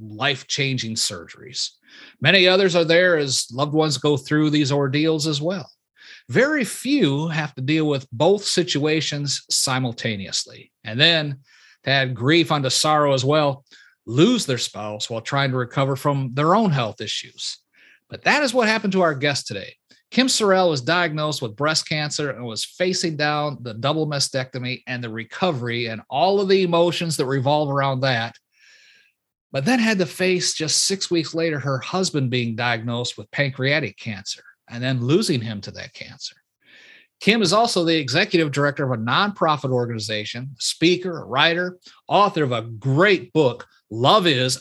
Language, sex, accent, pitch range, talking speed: English, male, American, 130-175 Hz, 165 wpm